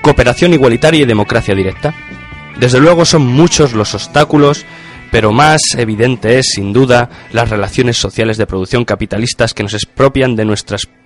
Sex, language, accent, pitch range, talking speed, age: male, Spanish, Spanish, 105-140 Hz, 150 wpm, 20-39